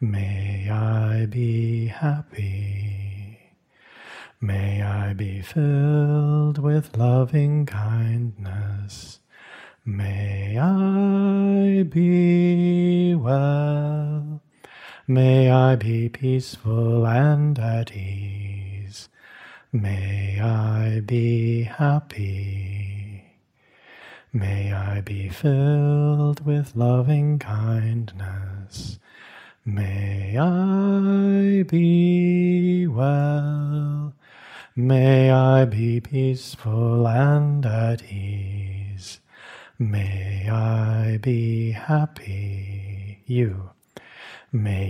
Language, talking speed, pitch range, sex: English, 65 wpm, 100-145 Hz, male